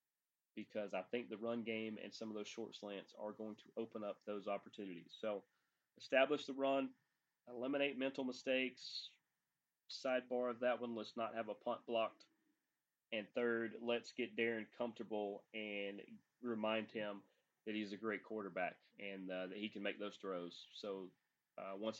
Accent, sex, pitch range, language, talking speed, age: American, male, 110-130 Hz, English, 165 wpm, 30-49